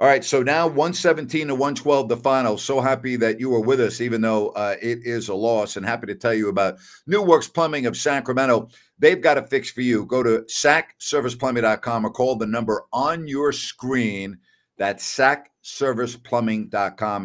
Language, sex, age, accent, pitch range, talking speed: English, male, 50-69, American, 100-125 Hz, 180 wpm